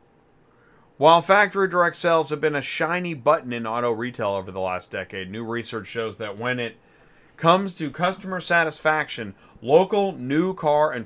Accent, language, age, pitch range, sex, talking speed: American, English, 40-59, 115-155 Hz, male, 165 wpm